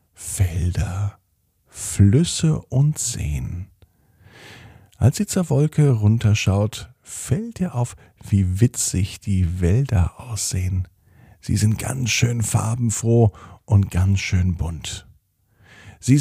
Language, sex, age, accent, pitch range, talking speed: German, male, 50-69, German, 95-120 Hz, 100 wpm